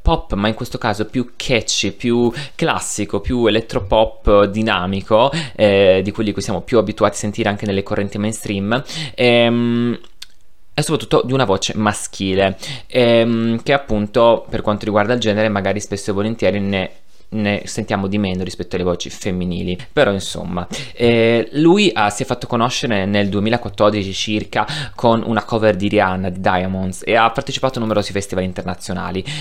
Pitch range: 95-120 Hz